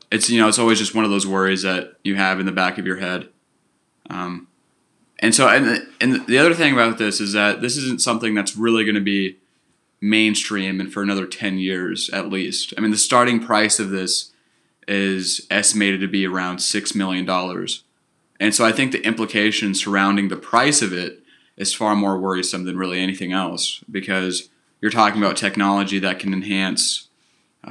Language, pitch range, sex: English, 95-105 Hz, male